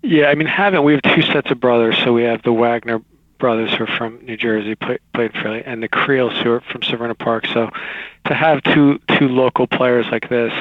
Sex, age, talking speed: male, 40-59, 230 wpm